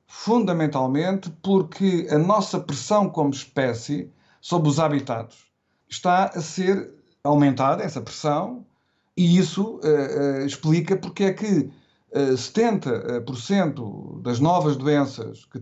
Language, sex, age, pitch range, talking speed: Portuguese, male, 50-69, 130-180 Hz, 115 wpm